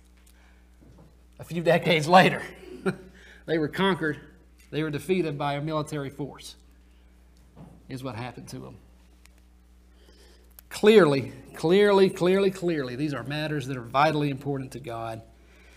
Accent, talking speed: American, 120 wpm